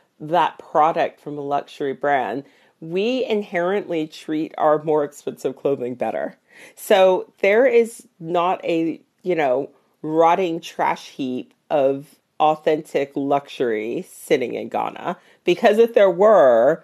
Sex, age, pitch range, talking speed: female, 40-59, 150-225 Hz, 120 wpm